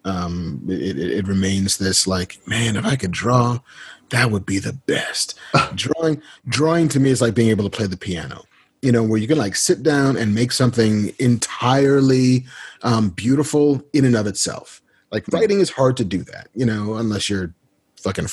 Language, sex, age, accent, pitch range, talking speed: English, male, 30-49, American, 100-140 Hz, 195 wpm